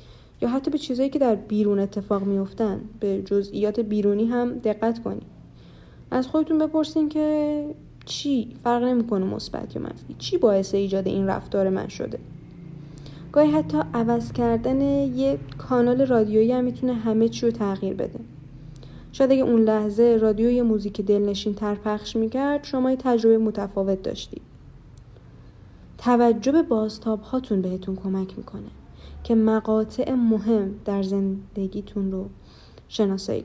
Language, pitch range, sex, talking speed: Persian, 195-240 Hz, female, 135 wpm